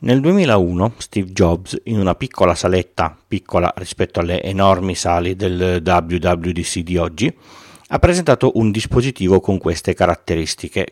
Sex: male